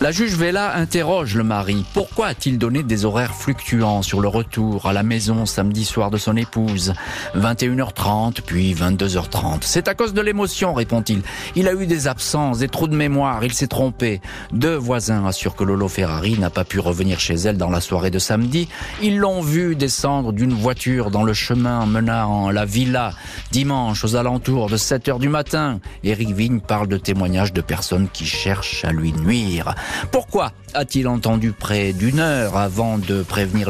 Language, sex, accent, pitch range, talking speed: French, male, French, 100-130 Hz, 185 wpm